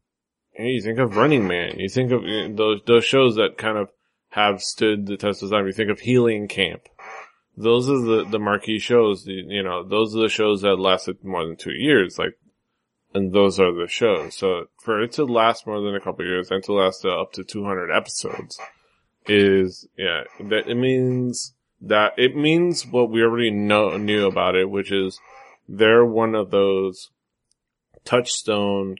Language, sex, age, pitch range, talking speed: English, male, 20-39, 95-115 Hz, 190 wpm